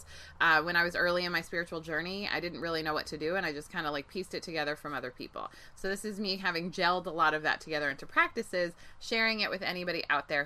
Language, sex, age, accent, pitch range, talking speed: English, female, 20-39, American, 165-210 Hz, 270 wpm